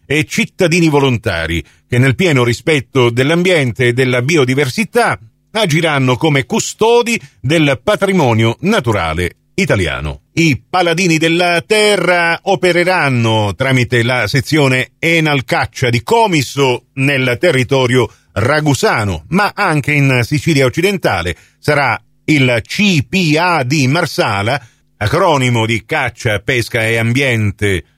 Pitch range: 120-170 Hz